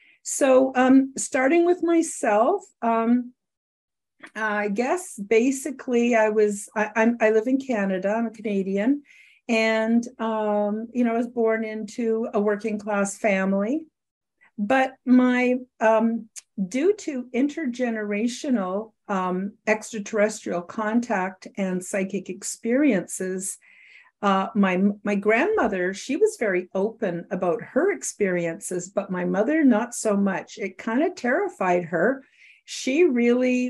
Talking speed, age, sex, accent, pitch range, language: 120 wpm, 50-69, female, American, 195-250 Hz, English